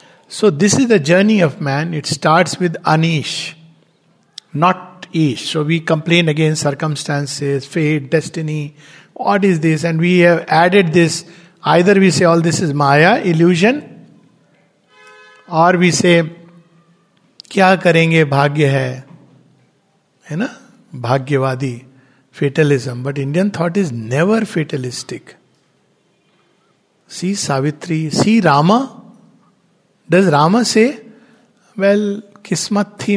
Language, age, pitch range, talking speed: English, 50-69, 150-195 Hz, 110 wpm